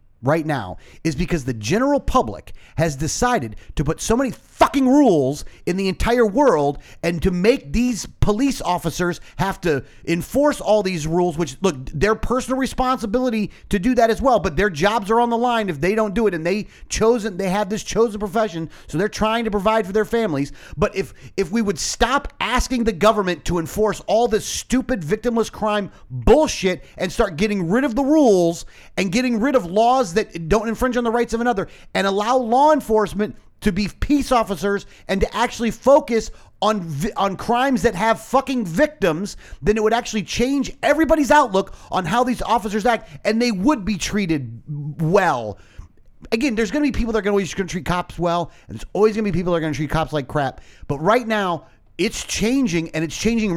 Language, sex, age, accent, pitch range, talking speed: English, male, 40-59, American, 170-235 Hz, 205 wpm